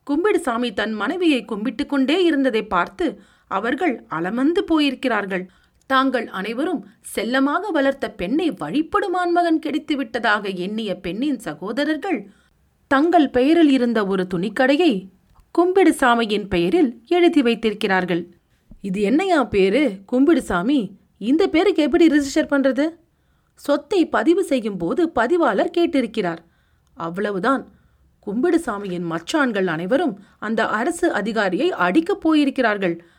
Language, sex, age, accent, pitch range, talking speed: Tamil, female, 40-59, native, 210-320 Hz, 100 wpm